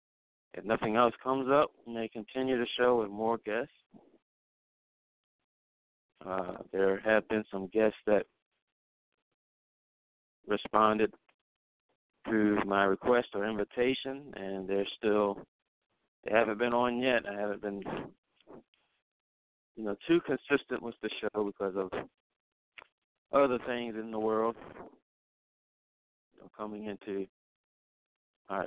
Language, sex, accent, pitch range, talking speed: English, male, American, 100-120 Hz, 115 wpm